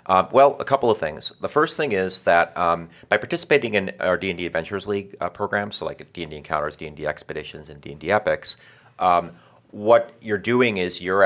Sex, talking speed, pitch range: male, 190 wpm, 85-100 Hz